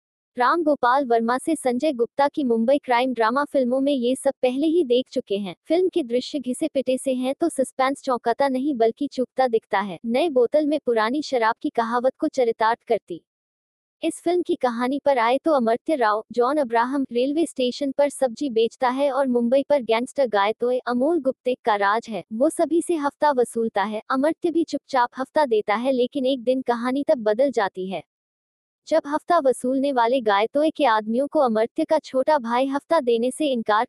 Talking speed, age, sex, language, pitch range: 190 wpm, 20-39, female, Hindi, 230-290 Hz